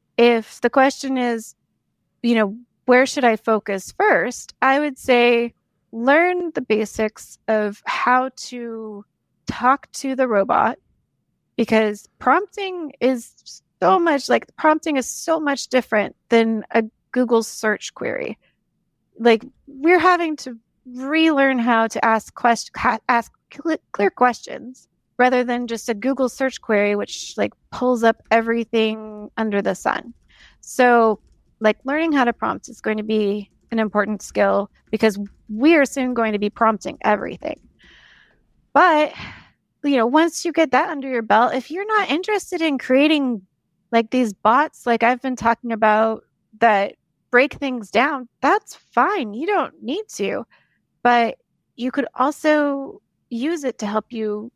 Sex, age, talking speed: female, 30-49, 145 wpm